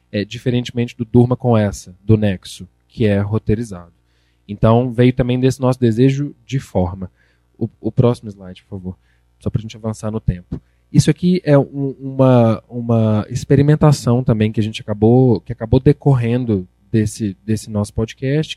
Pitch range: 105-145 Hz